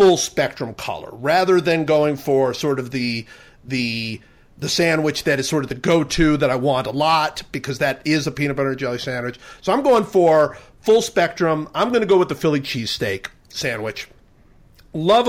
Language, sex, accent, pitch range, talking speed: English, male, American, 130-165 Hz, 190 wpm